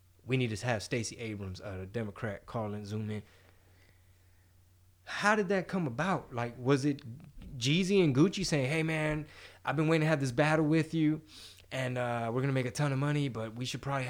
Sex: male